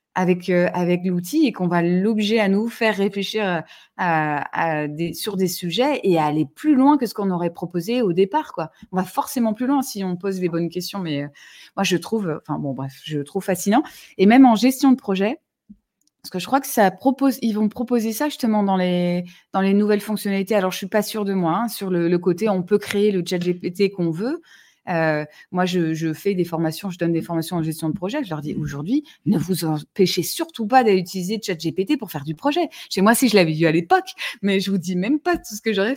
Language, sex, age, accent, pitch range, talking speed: French, female, 20-39, French, 175-225 Hz, 240 wpm